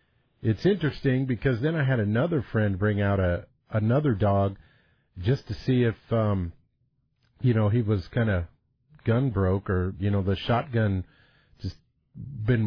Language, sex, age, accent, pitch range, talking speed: English, male, 50-69, American, 100-120 Hz, 155 wpm